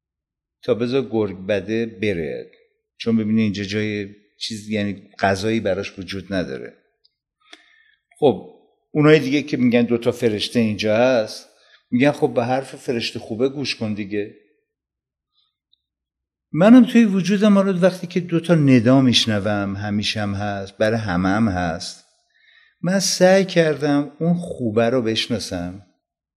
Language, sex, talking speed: Persian, male, 125 wpm